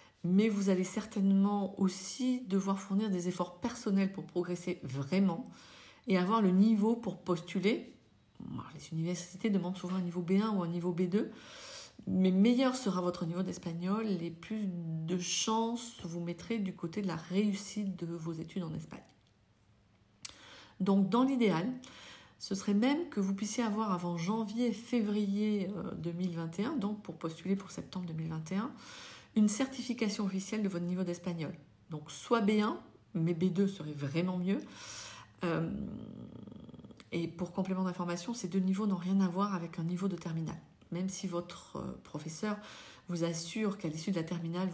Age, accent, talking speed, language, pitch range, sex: 40-59, French, 155 wpm, French, 175-215 Hz, female